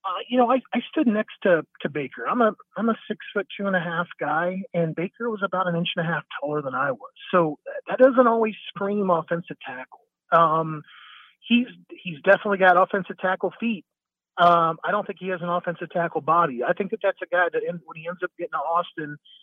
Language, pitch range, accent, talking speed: English, 165-200 Hz, American, 210 wpm